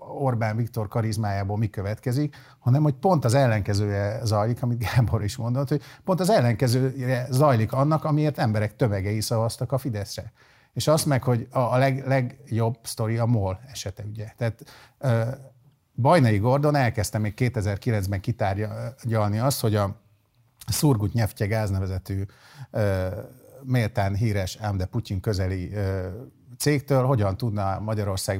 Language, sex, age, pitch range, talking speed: Hungarian, male, 50-69, 100-135 Hz, 130 wpm